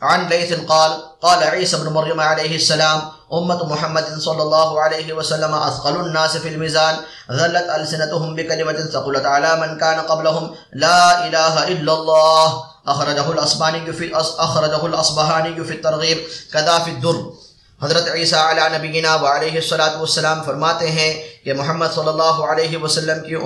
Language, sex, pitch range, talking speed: Arabic, male, 155-170 Hz, 140 wpm